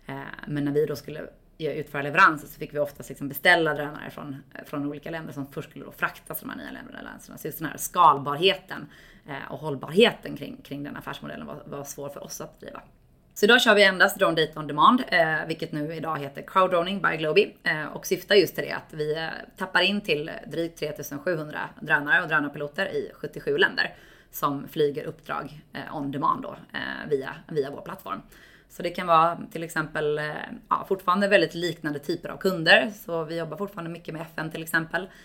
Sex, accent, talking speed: female, native, 190 wpm